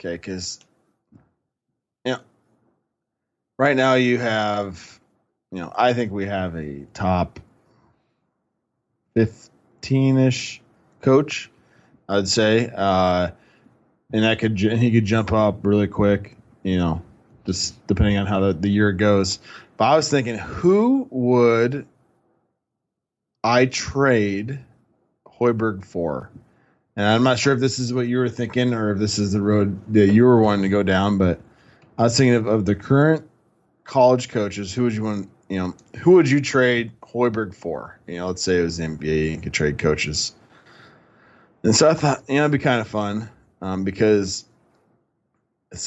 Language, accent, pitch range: English, American, 95-125 Hz